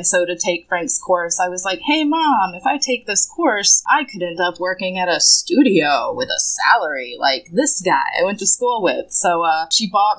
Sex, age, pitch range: female, 20-39, 170-220 Hz